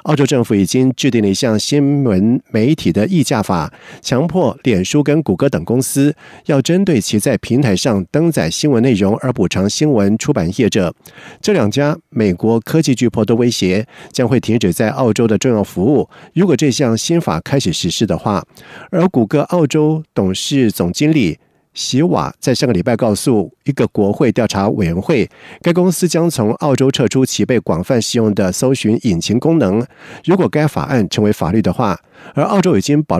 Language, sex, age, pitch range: Chinese, male, 50-69, 110-150 Hz